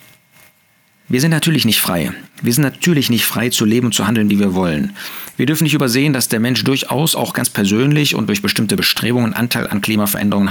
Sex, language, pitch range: male, German, 105-145 Hz